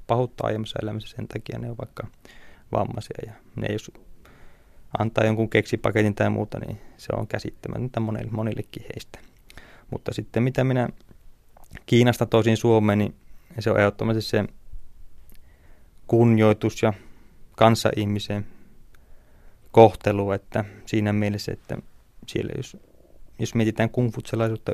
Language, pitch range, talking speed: Finnish, 105-115 Hz, 115 wpm